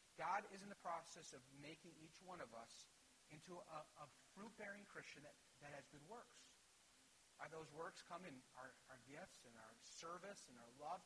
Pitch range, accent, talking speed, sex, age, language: 155-220 Hz, American, 190 wpm, male, 40-59, English